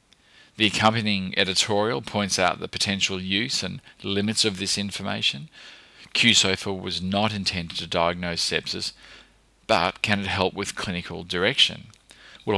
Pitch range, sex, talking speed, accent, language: 90-110 Hz, male, 135 wpm, Australian, English